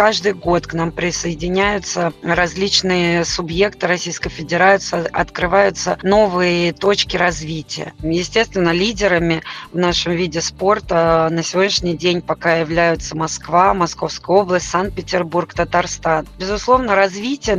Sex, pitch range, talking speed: female, 170-195 Hz, 105 wpm